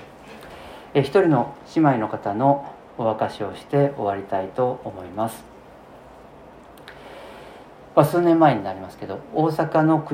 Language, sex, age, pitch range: Japanese, male, 40-59, 110-150 Hz